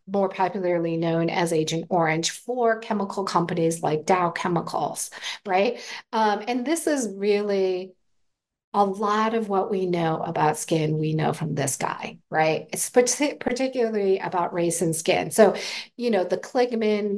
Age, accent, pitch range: 40-59, American, 175-225 Hz